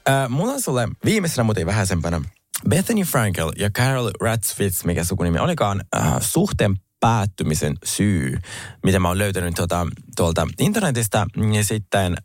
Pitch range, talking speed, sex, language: 95-130 Hz, 130 wpm, male, Finnish